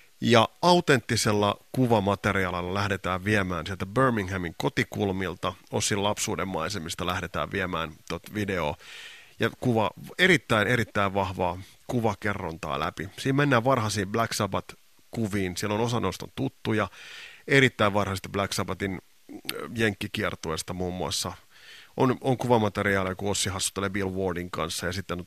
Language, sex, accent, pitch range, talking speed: Finnish, male, native, 90-115 Hz, 120 wpm